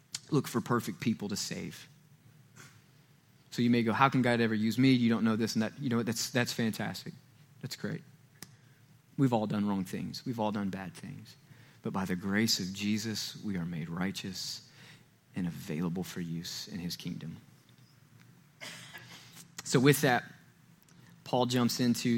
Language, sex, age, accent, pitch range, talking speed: English, male, 20-39, American, 120-190 Hz, 170 wpm